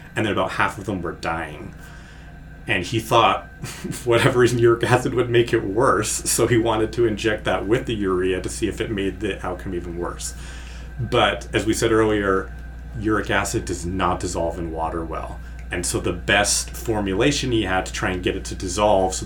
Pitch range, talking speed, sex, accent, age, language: 80-115 Hz, 205 wpm, male, American, 30-49, English